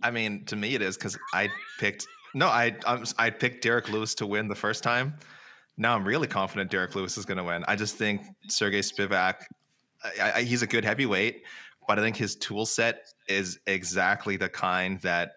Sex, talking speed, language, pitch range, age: male, 210 wpm, English, 95-120 Hz, 20-39